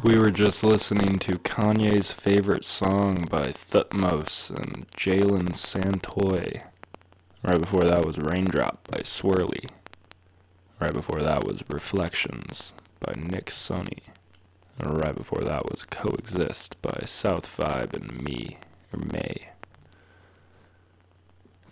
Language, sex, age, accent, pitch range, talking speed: English, male, 20-39, American, 90-100 Hz, 115 wpm